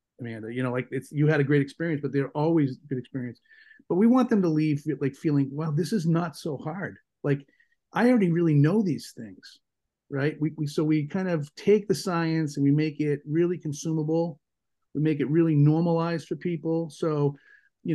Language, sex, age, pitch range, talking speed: English, male, 40-59, 145-165 Hz, 205 wpm